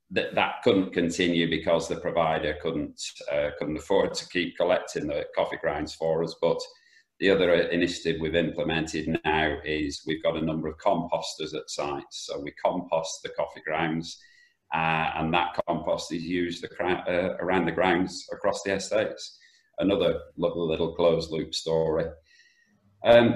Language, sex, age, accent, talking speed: English, male, 40-59, British, 150 wpm